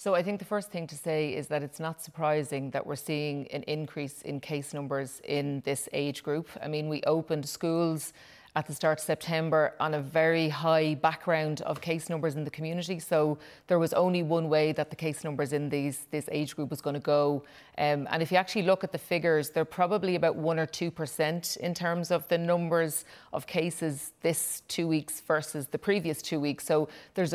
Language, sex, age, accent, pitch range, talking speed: English, female, 30-49, Irish, 150-170 Hz, 210 wpm